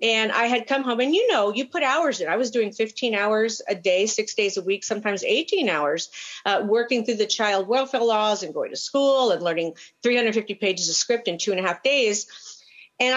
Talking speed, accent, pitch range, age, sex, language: 230 wpm, American, 210-270 Hz, 50-69, female, English